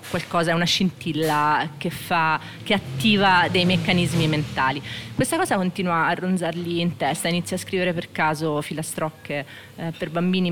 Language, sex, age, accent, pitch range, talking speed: Italian, female, 30-49, native, 155-180 Hz, 155 wpm